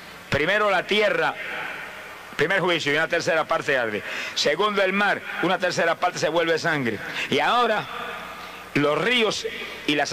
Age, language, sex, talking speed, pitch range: 60-79, Spanish, male, 150 wpm, 185-235 Hz